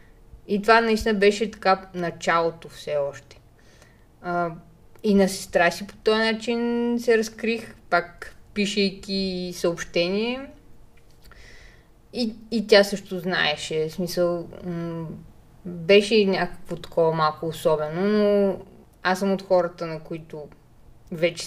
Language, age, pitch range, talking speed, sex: Bulgarian, 20-39, 175-225 Hz, 125 wpm, female